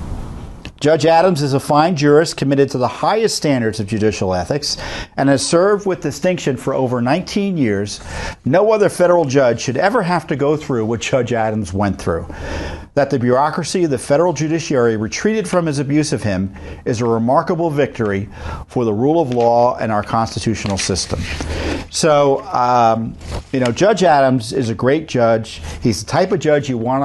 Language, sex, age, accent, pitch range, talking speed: English, male, 50-69, American, 95-160 Hz, 180 wpm